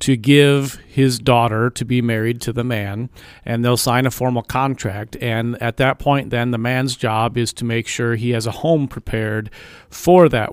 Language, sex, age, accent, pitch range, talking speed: English, male, 40-59, American, 120-140 Hz, 200 wpm